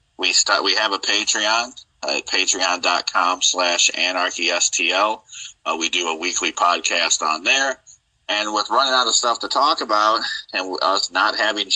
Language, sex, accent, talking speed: English, male, American, 170 wpm